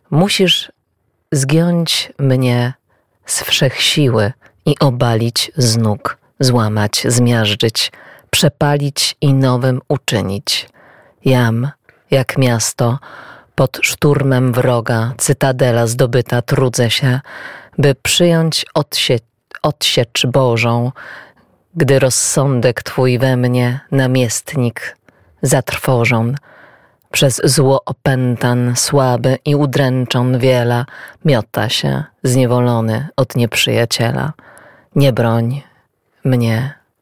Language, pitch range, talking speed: Polish, 120-140 Hz, 85 wpm